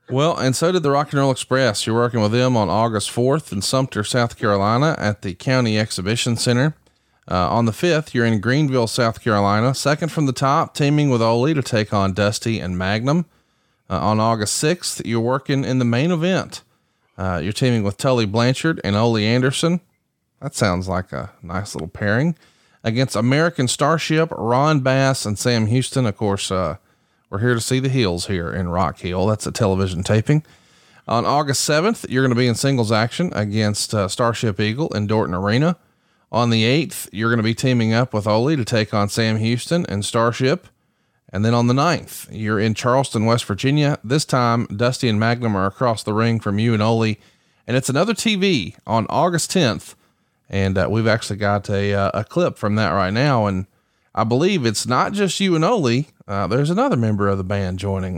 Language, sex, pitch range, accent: English, male, 105-135 Hz, American